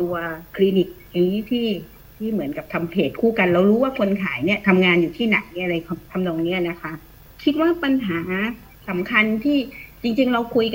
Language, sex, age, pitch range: Thai, female, 30-49, 185-240 Hz